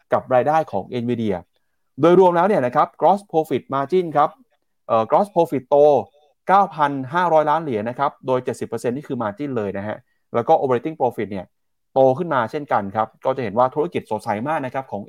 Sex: male